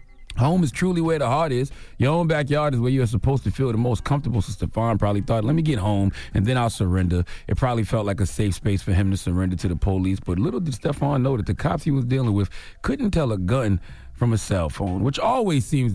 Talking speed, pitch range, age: 255 wpm, 95-135 Hz, 40-59